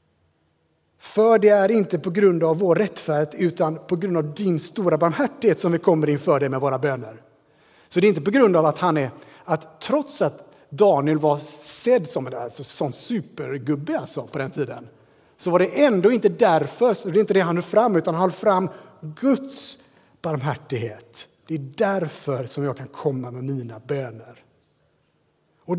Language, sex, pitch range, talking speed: Swedish, male, 135-200 Hz, 185 wpm